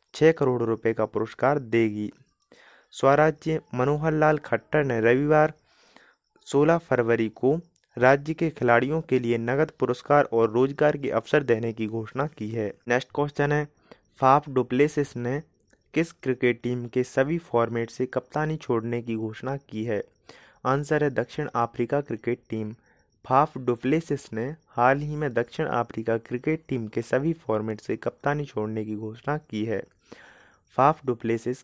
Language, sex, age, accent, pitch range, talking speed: Hindi, male, 30-49, native, 115-145 Hz, 150 wpm